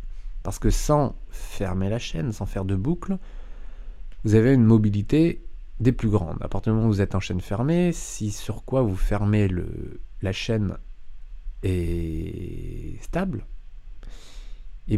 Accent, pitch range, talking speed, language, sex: French, 90-120 Hz, 150 wpm, French, male